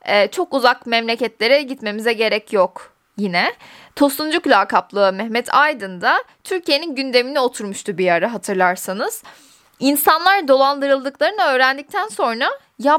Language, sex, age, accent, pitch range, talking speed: Turkish, female, 10-29, native, 215-315 Hz, 105 wpm